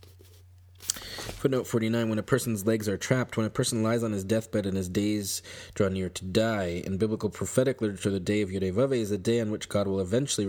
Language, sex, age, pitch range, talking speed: English, male, 20-39, 95-120 Hz, 215 wpm